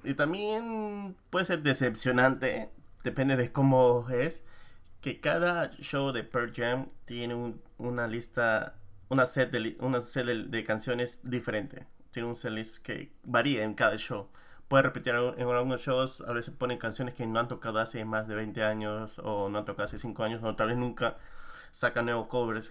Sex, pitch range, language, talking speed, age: male, 110-130 Hz, Spanish, 180 wpm, 30-49